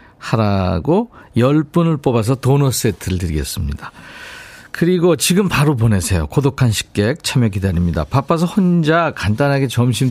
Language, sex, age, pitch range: Korean, male, 40-59, 100-150 Hz